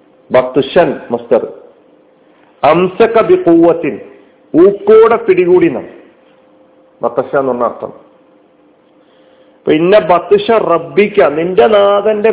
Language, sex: Malayalam, male